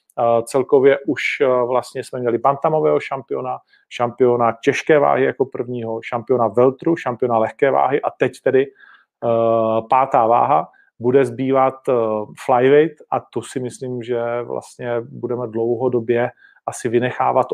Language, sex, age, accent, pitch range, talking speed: Czech, male, 40-59, native, 115-135 Hz, 120 wpm